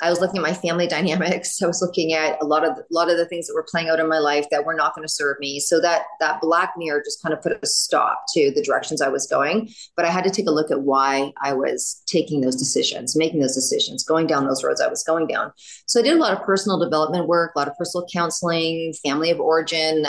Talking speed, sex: 275 wpm, female